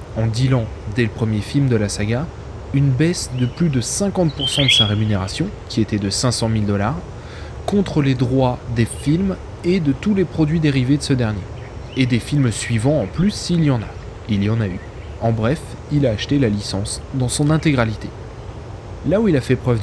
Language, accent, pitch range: French, French, 105-135 Hz